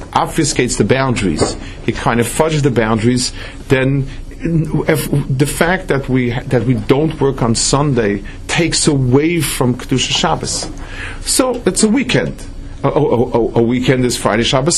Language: English